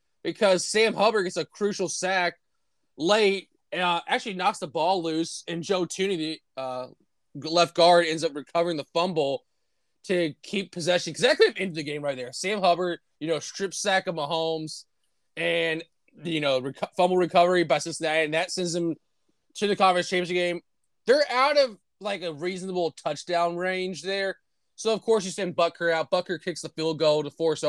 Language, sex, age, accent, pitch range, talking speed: English, male, 20-39, American, 165-200 Hz, 190 wpm